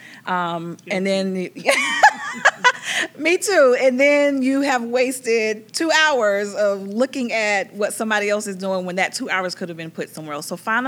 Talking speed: 175 wpm